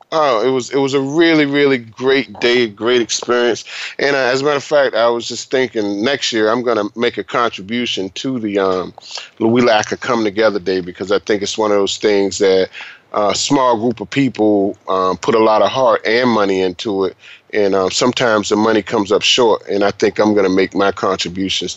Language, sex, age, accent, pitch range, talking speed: English, male, 30-49, American, 105-135 Hz, 225 wpm